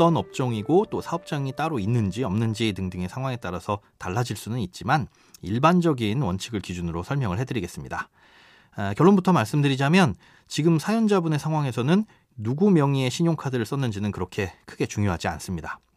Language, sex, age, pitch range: Korean, male, 30-49, 110-165 Hz